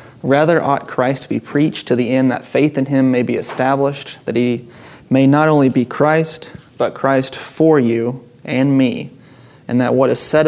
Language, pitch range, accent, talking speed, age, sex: English, 120-135 Hz, American, 195 wpm, 20-39, male